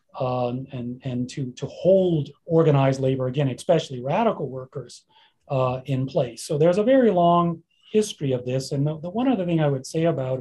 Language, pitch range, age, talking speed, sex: English, 145-205 Hz, 40-59, 190 wpm, male